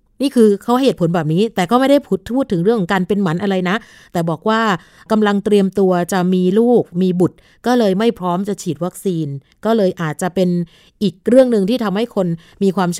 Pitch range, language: 180-230 Hz, Thai